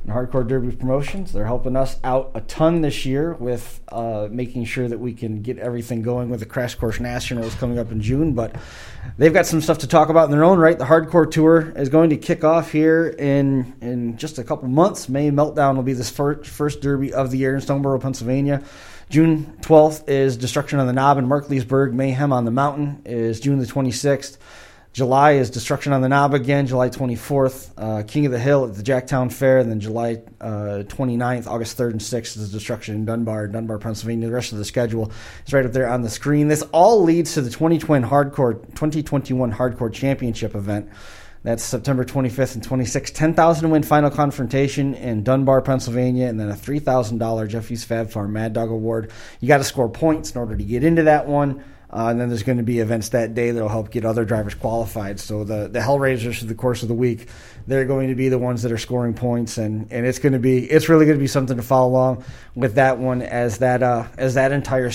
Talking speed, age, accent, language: 225 wpm, 30-49, American, English